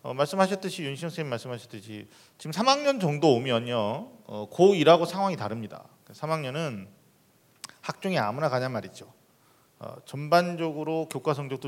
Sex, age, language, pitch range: male, 40-59, Korean, 115-165 Hz